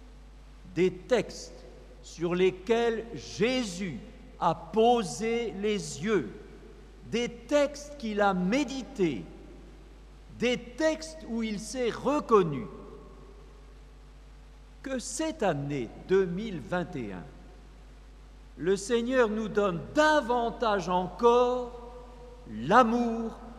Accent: French